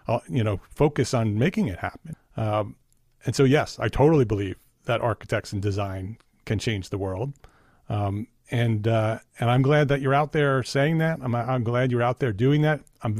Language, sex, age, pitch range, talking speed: English, male, 40-59, 110-140 Hz, 195 wpm